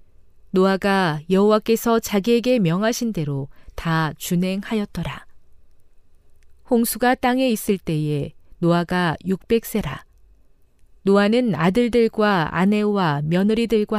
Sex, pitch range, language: female, 155-215 Hz, Korean